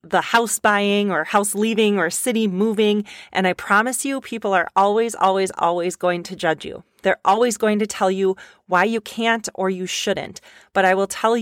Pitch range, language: 185-230 Hz, English